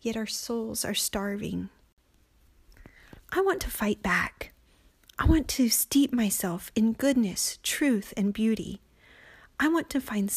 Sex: female